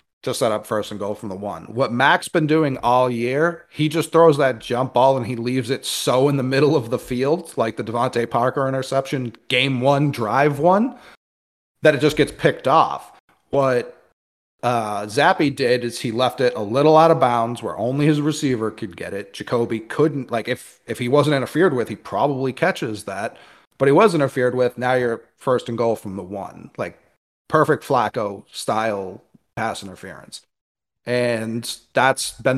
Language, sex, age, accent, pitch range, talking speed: English, male, 30-49, American, 115-140 Hz, 190 wpm